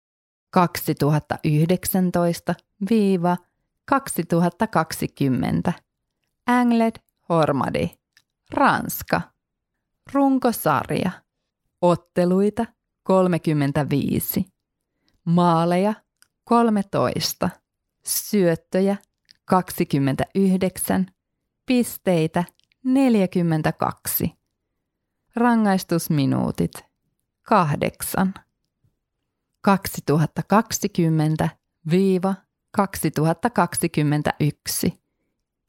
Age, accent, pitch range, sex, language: 30-49, native, 165-205 Hz, female, Finnish